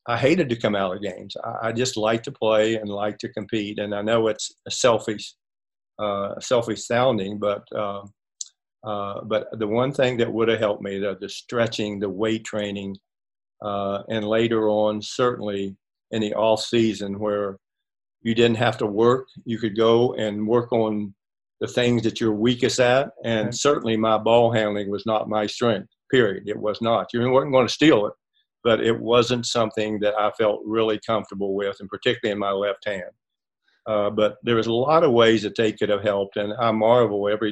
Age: 50-69